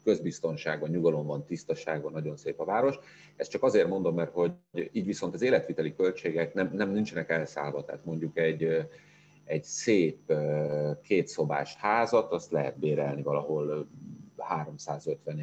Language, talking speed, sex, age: Hungarian, 130 wpm, male, 40-59